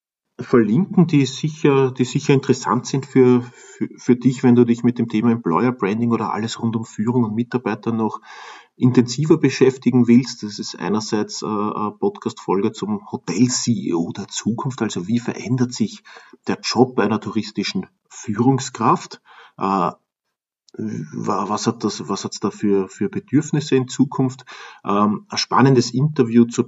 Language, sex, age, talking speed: German, male, 40-59, 140 wpm